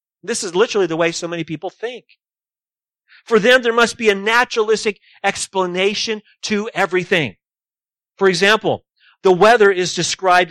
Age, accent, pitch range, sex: 40-59, American, 170-215 Hz, male